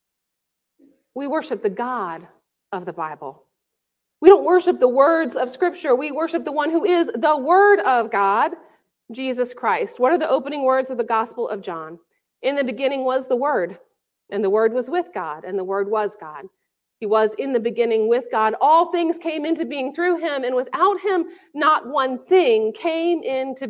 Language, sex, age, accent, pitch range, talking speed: English, female, 40-59, American, 225-330 Hz, 190 wpm